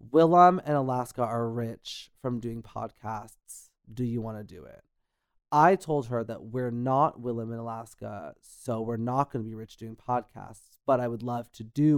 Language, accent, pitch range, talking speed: English, American, 115-160 Hz, 190 wpm